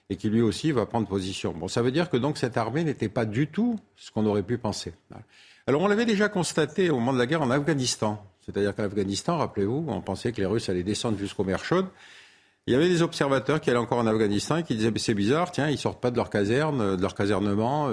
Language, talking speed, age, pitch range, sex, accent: French, 260 wpm, 50-69, 105-140 Hz, male, French